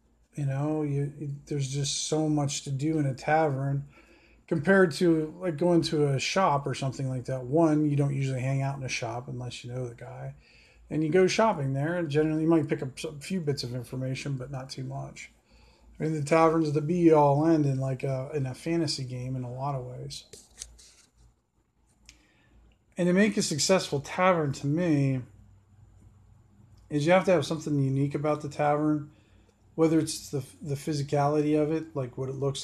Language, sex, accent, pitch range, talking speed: English, male, American, 130-155 Hz, 200 wpm